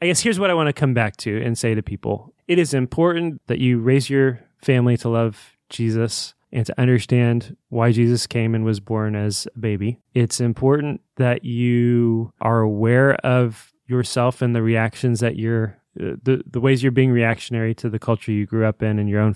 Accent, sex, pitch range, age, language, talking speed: American, male, 115-130 Hz, 20-39, English, 205 wpm